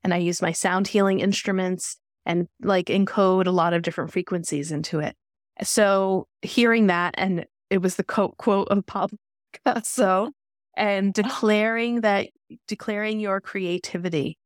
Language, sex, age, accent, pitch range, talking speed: English, female, 20-39, American, 175-215 Hz, 140 wpm